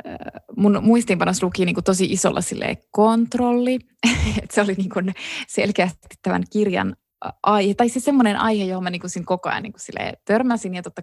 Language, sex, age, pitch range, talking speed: Finnish, female, 20-39, 190-235 Hz, 150 wpm